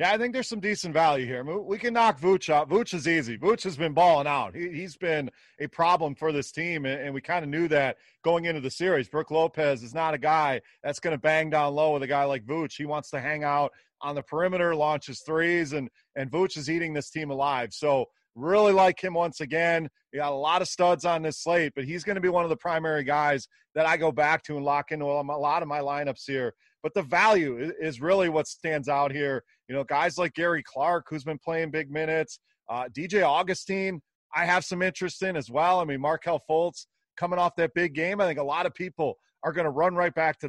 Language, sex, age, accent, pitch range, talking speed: English, male, 30-49, American, 145-180 Hz, 245 wpm